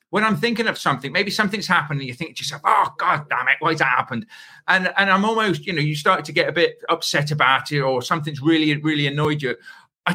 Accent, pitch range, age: British, 150-195 Hz, 40-59